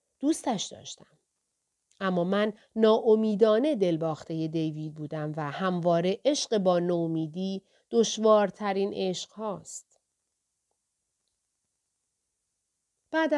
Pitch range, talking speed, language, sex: 185-245 Hz, 75 wpm, Persian, female